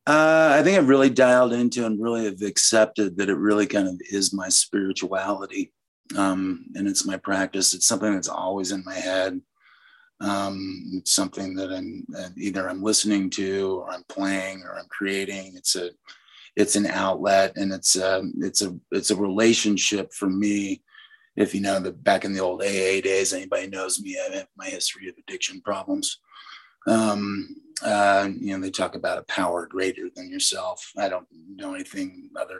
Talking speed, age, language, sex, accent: 180 wpm, 30-49, English, male, American